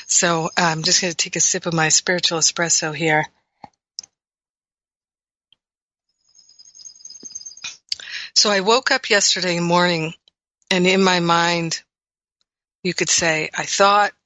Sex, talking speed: female, 120 wpm